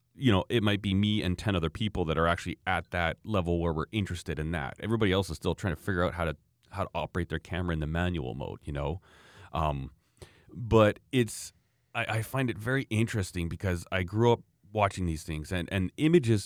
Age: 30-49